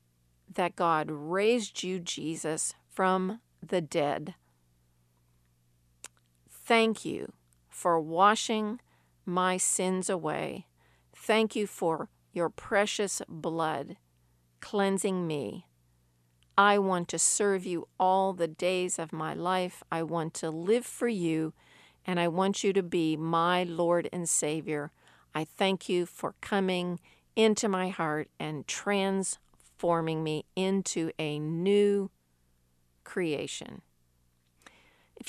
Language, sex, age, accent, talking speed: English, female, 50-69, American, 115 wpm